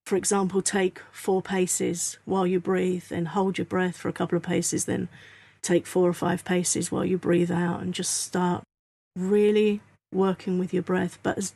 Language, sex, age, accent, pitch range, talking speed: English, female, 40-59, British, 180-210 Hz, 190 wpm